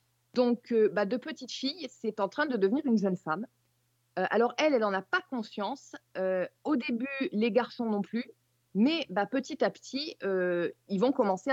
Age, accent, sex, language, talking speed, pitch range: 30-49, French, female, French, 195 wpm, 190-250 Hz